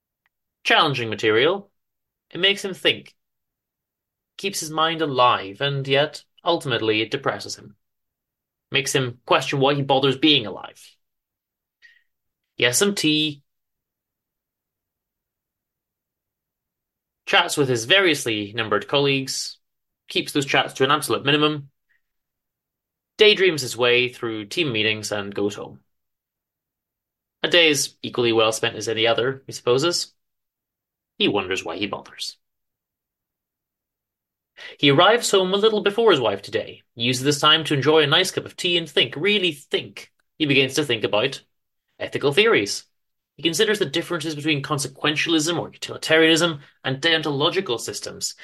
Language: English